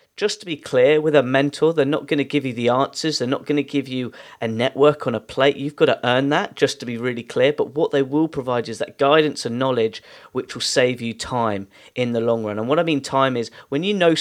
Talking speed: 270 wpm